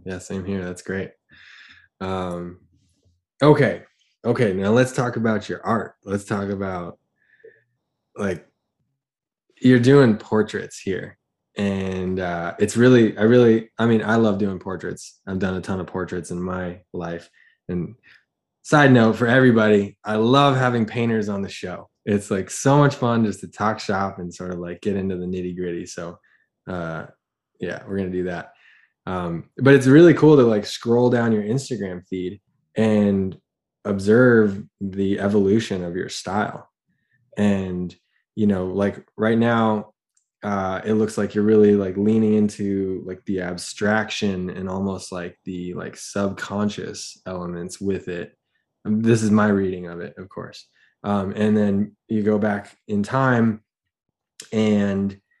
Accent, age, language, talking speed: American, 20-39, English, 155 wpm